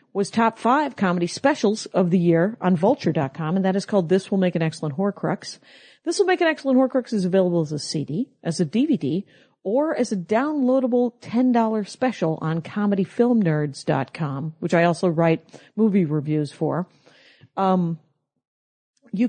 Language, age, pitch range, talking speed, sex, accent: English, 50-69, 175-240 Hz, 160 wpm, female, American